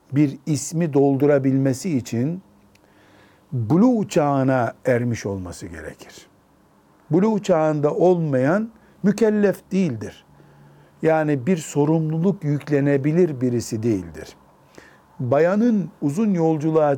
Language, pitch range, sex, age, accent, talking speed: Turkish, 130-170 Hz, male, 60-79, native, 80 wpm